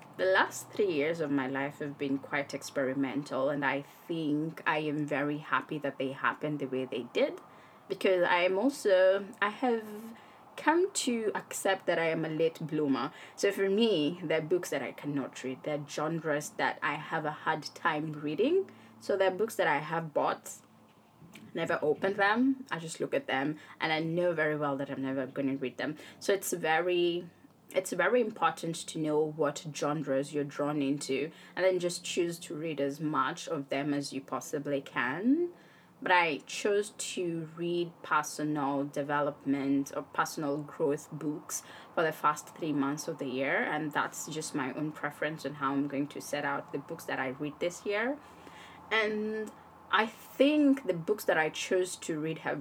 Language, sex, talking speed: English, female, 185 wpm